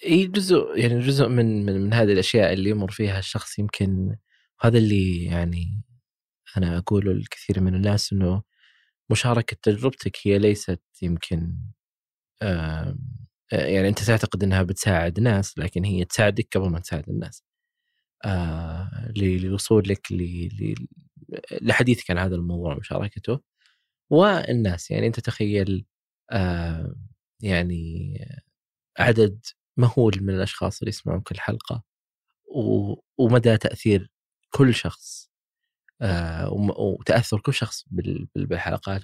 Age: 20-39